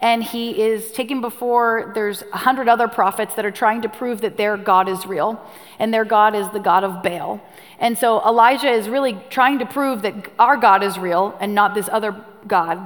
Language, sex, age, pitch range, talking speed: English, female, 30-49, 195-245 Hz, 215 wpm